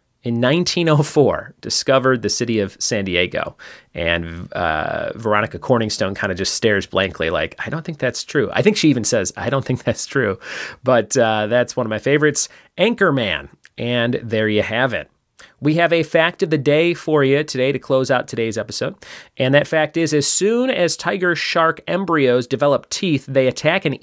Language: English